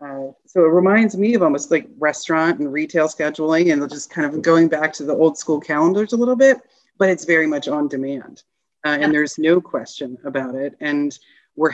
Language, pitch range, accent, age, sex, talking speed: English, 140-165 Hz, American, 30-49, female, 210 wpm